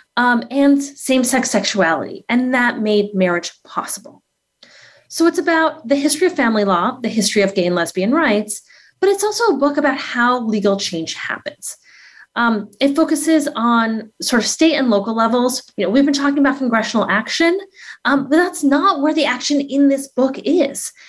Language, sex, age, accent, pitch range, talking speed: English, female, 30-49, American, 220-295 Hz, 180 wpm